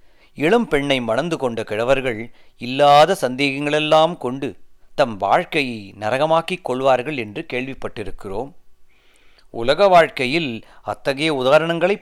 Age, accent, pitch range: 40-59, native, 125-170 Hz